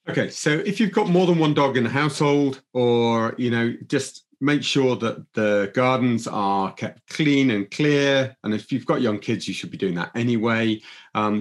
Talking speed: 205 wpm